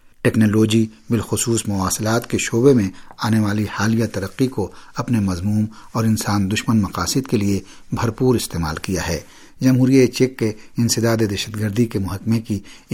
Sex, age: male, 50-69